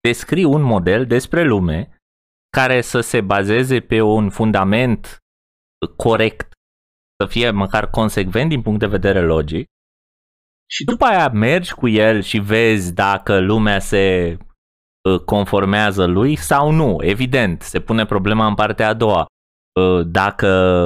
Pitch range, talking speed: 90-135 Hz, 130 wpm